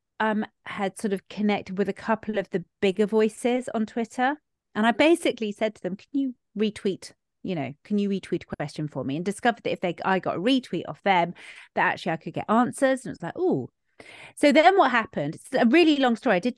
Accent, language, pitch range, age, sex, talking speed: British, English, 170-225 Hz, 30-49, female, 230 wpm